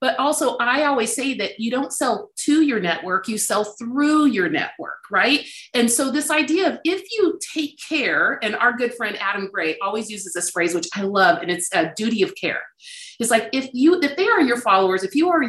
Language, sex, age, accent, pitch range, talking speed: English, female, 40-59, American, 190-265 Hz, 225 wpm